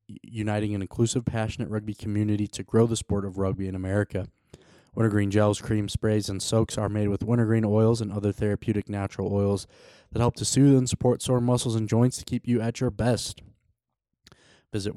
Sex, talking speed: male, 190 wpm